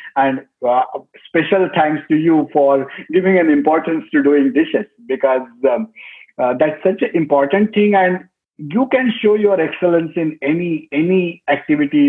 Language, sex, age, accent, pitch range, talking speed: English, male, 50-69, Indian, 135-205 Hz, 155 wpm